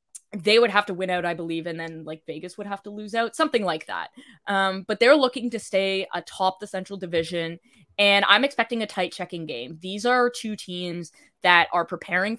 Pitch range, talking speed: 175-210 Hz, 215 wpm